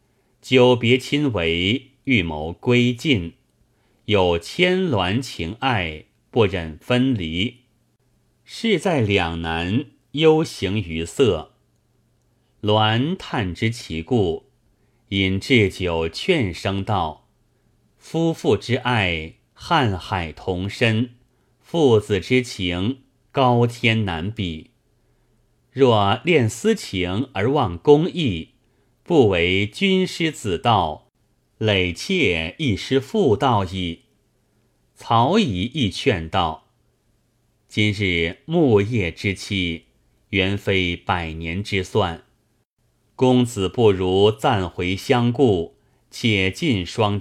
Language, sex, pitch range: Chinese, male, 95-125 Hz